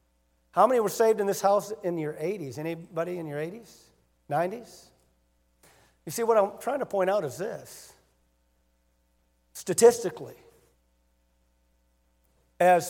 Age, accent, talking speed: 50-69, American, 125 wpm